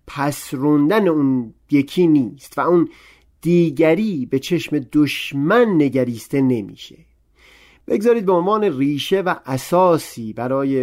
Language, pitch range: Persian, 125-165 Hz